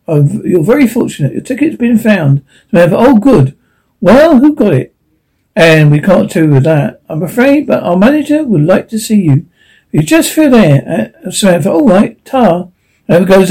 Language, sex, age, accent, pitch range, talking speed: English, male, 60-79, British, 160-210 Hz, 175 wpm